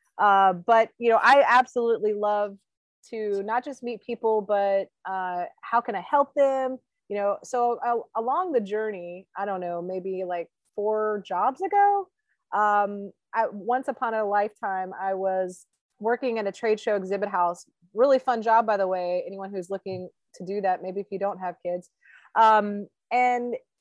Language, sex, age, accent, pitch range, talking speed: English, female, 30-49, American, 190-230 Hz, 175 wpm